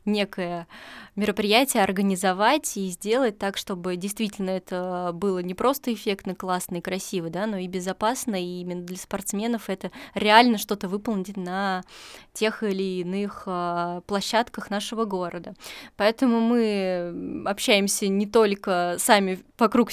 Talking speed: 125 wpm